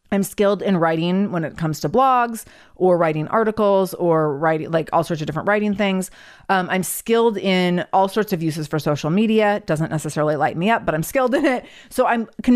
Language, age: English, 30-49